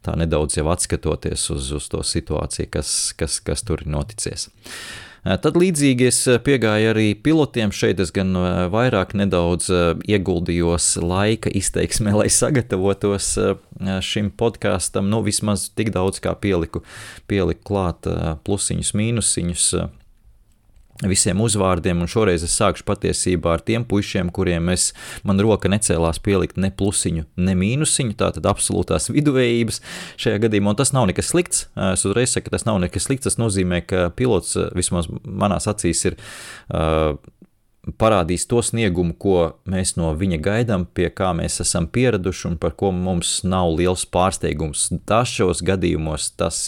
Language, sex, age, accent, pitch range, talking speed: English, male, 30-49, Slovak, 85-105 Hz, 145 wpm